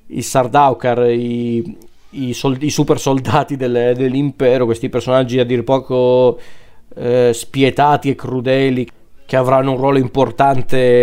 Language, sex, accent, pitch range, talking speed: Italian, male, native, 120-135 Hz, 115 wpm